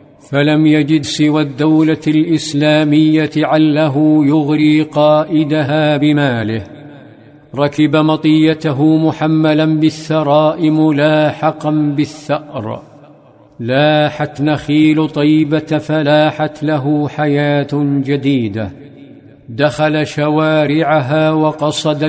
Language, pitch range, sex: Arabic, 145-155 Hz, male